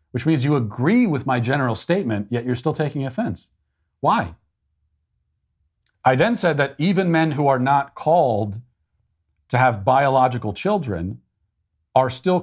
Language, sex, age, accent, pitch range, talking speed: English, male, 40-59, American, 100-125 Hz, 145 wpm